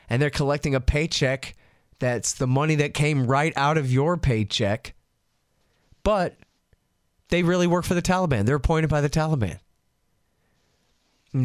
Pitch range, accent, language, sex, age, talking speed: 120-150 Hz, American, English, male, 30-49, 145 wpm